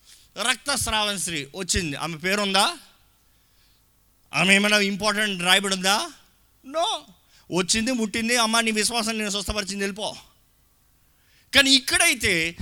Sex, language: male, Telugu